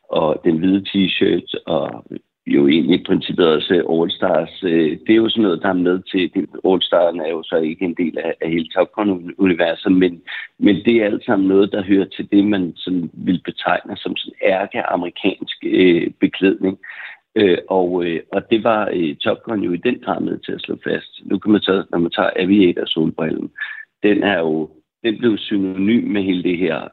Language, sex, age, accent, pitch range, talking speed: Danish, male, 60-79, native, 90-105 Hz, 185 wpm